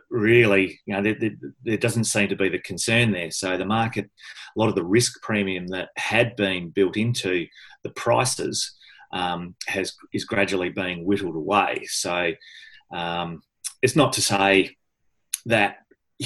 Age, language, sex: 30-49, English, male